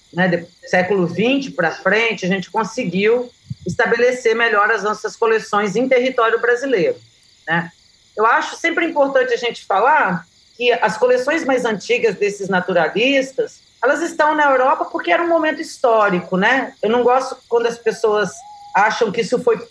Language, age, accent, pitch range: Portuguese, 40-59, Brazilian, 195-260 Hz